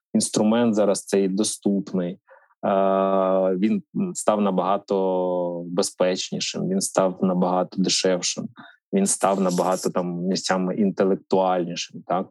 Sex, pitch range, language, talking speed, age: male, 95-110 Hz, Ukrainian, 95 wpm, 20-39